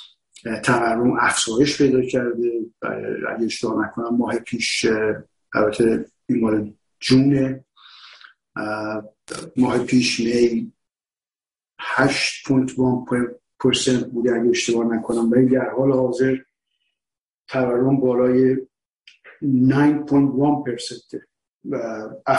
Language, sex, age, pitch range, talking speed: Persian, male, 50-69, 115-135 Hz, 70 wpm